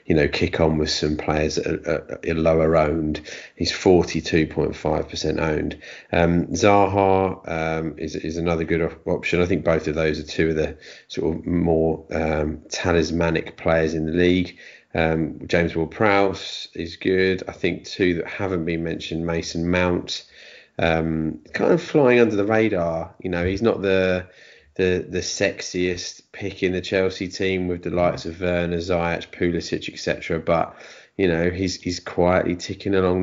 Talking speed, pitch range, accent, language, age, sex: 170 wpm, 80-95 Hz, British, English, 30-49, male